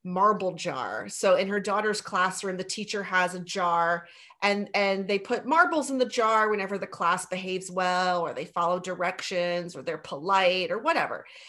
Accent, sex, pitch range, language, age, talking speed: American, female, 190-255 Hz, English, 30-49, 180 wpm